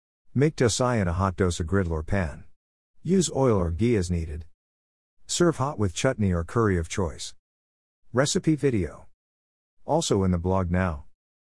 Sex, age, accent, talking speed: male, 50-69, American, 165 wpm